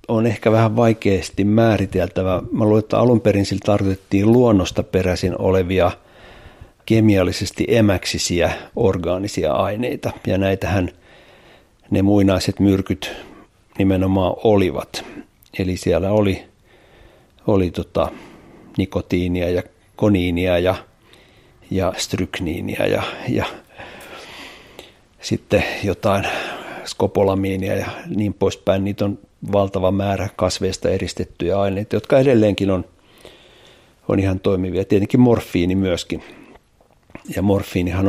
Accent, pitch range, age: native, 95-105 Hz, 50-69